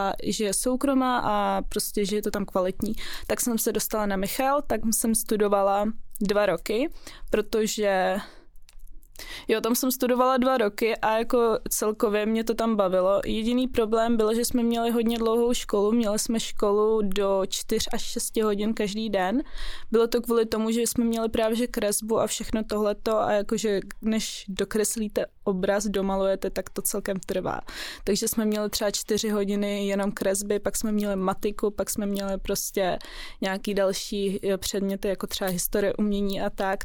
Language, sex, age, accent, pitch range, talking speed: Czech, female, 20-39, native, 200-230 Hz, 165 wpm